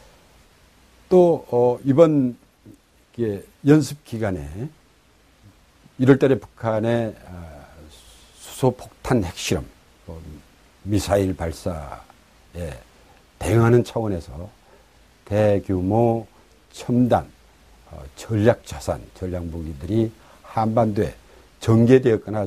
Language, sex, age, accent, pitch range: Korean, male, 60-79, native, 85-120 Hz